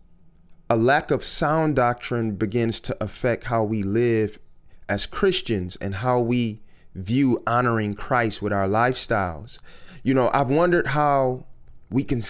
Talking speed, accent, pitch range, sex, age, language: 140 wpm, American, 115-155 Hz, male, 30-49, English